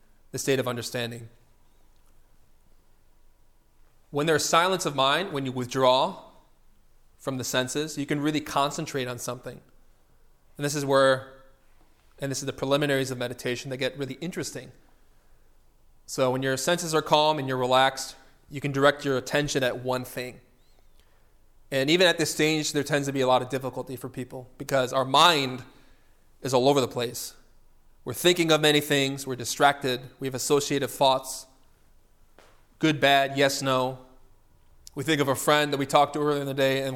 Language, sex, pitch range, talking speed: English, male, 130-150 Hz, 170 wpm